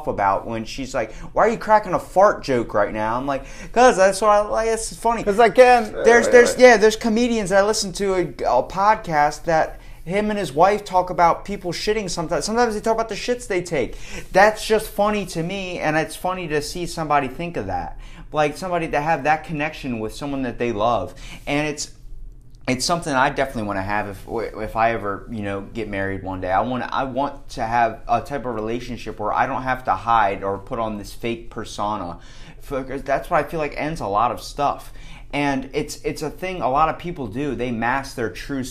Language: English